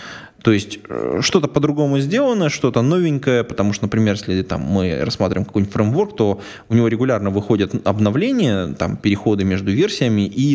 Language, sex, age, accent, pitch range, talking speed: Russian, male, 20-39, native, 100-125 Hz, 150 wpm